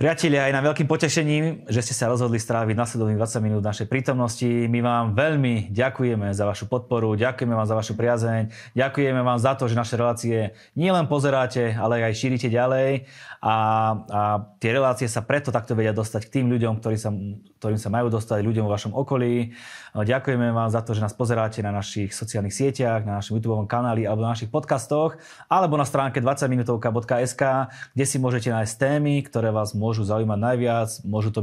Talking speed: 185 wpm